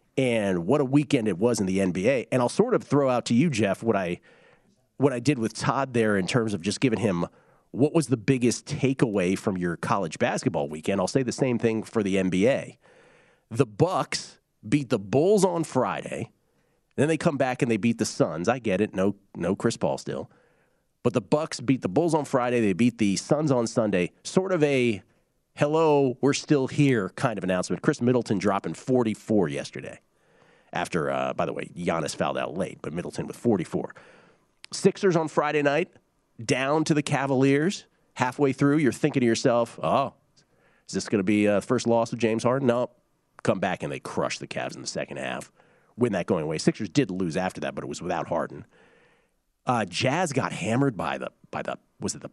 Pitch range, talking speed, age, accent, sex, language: 105-145 Hz, 210 wpm, 40-59, American, male, English